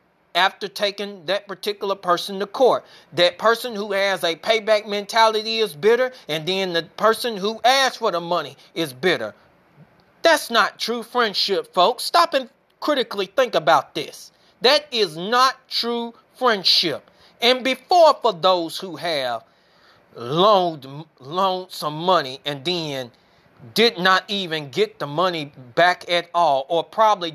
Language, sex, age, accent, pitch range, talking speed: English, male, 30-49, American, 175-230 Hz, 145 wpm